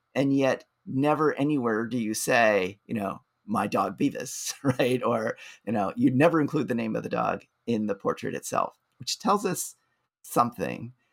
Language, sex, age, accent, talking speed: English, male, 30-49, American, 175 wpm